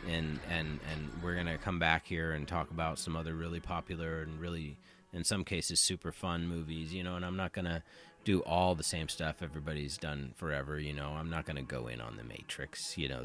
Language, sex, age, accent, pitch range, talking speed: English, male, 30-49, American, 75-90 Hz, 220 wpm